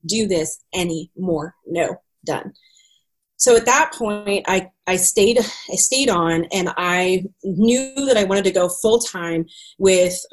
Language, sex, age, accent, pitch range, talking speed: English, female, 30-49, American, 170-205 Hz, 150 wpm